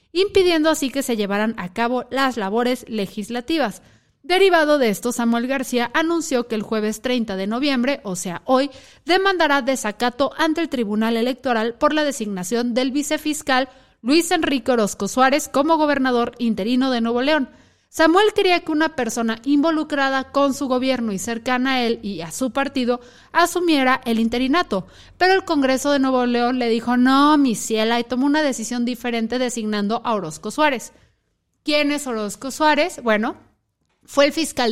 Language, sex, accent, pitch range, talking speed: Spanish, female, Mexican, 230-280 Hz, 160 wpm